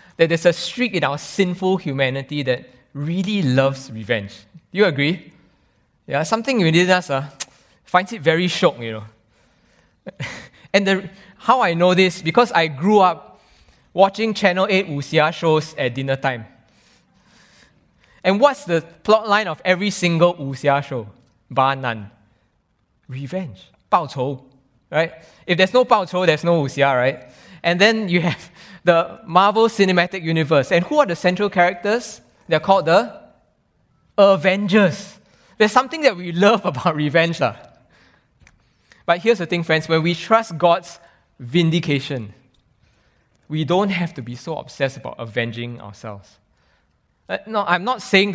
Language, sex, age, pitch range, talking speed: English, male, 20-39, 135-190 Hz, 145 wpm